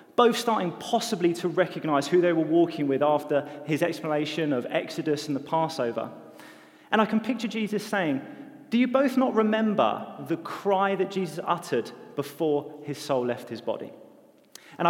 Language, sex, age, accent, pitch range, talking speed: English, male, 30-49, British, 145-205 Hz, 165 wpm